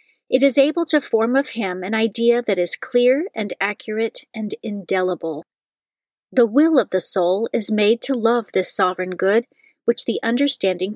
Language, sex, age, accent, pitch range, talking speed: English, female, 40-59, American, 200-275 Hz, 170 wpm